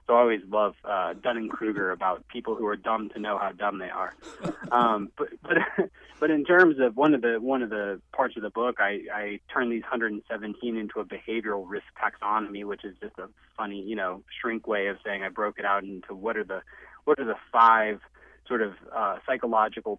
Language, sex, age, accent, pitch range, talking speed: English, male, 30-49, American, 100-115 Hz, 215 wpm